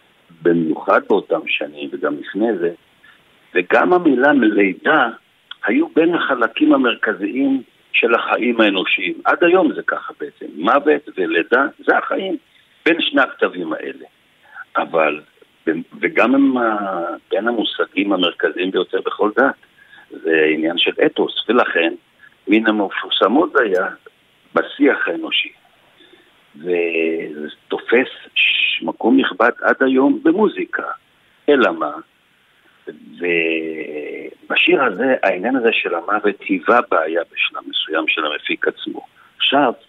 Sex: male